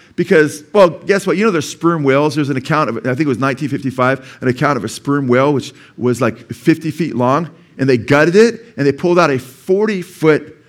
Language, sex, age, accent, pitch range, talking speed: English, male, 40-59, American, 115-150 Hz, 225 wpm